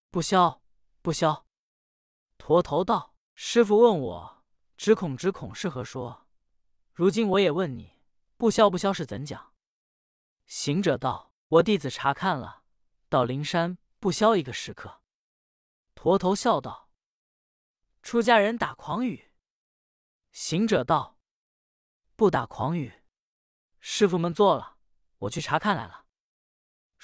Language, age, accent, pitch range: Chinese, 20-39, native, 130-210 Hz